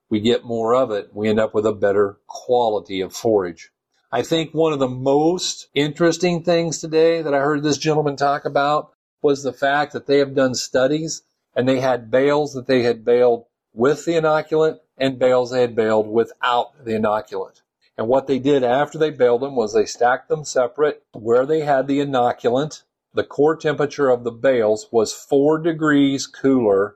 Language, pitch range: English, 120-150 Hz